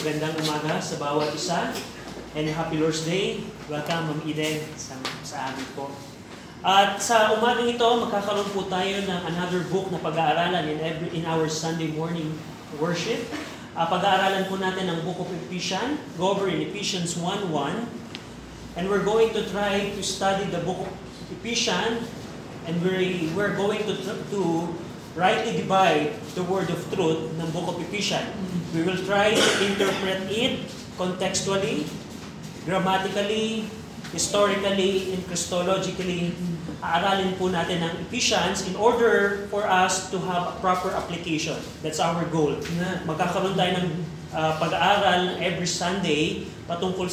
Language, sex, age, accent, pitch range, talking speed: Filipino, male, 20-39, native, 165-200 Hz, 140 wpm